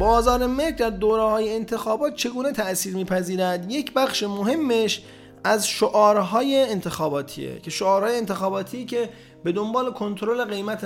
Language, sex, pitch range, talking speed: Persian, male, 170-230 Hz, 135 wpm